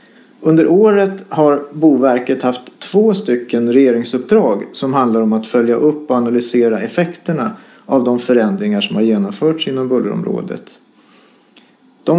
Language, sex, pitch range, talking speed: Swedish, male, 125-190 Hz, 130 wpm